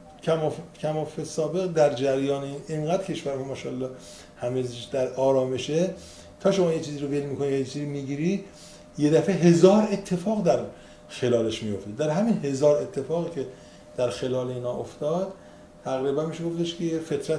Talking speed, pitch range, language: 150 wpm, 120-170 Hz, Persian